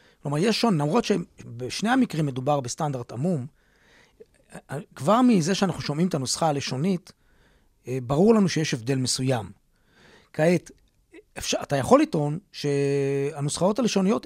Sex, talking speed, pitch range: male, 120 wpm, 140-200 Hz